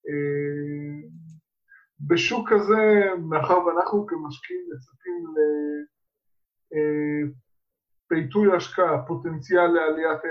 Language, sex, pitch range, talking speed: Hebrew, male, 155-190 Hz, 65 wpm